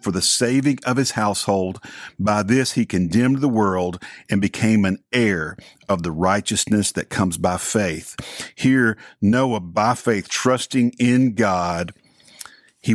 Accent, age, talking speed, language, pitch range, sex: American, 50-69, 145 wpm, English, 100-125 Hz, male